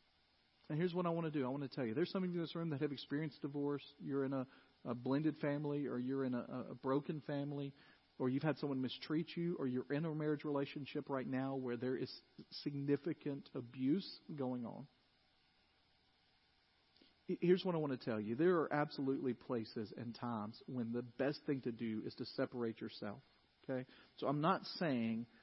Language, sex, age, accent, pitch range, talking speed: English, male, 40-59, American, 120-145 Hz, 200 wpm